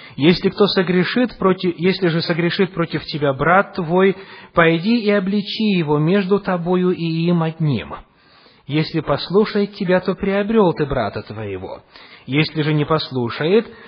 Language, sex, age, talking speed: English, male, 30-49, 140 wpm